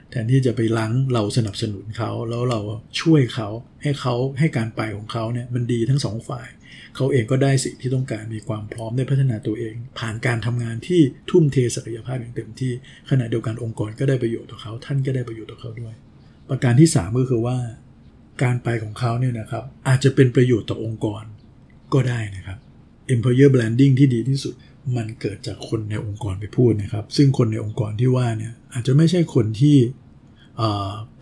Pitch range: 110-135 Hz